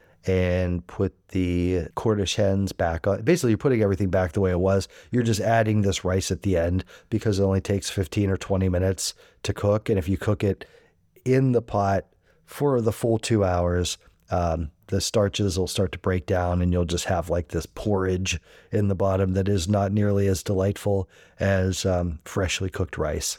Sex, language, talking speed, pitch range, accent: male, English, 195 wpm, 95-115 Hz, American